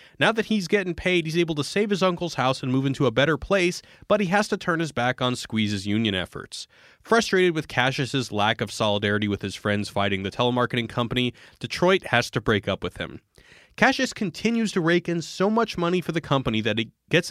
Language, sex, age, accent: English, male, 30-49, American